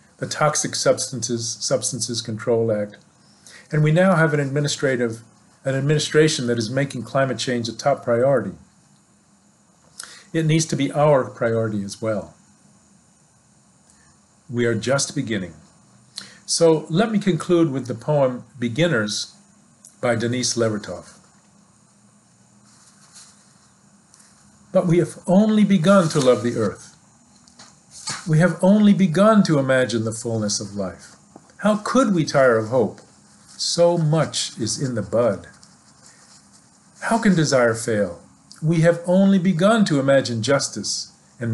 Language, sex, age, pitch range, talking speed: English, male, 50-69, 115-160 Hz, 125 wpm